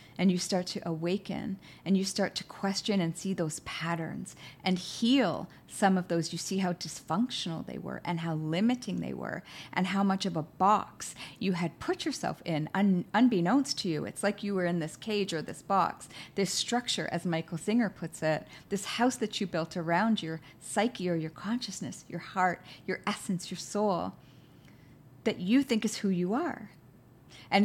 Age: 40-59